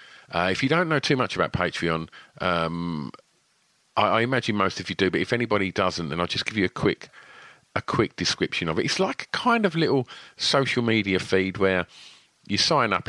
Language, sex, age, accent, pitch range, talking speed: English, male, 40-59, British, 80-105 Hz, 210 wpm